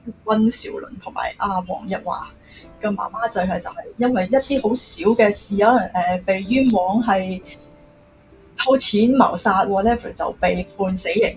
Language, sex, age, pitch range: Chinese, female, 20-39, 185-240 Hz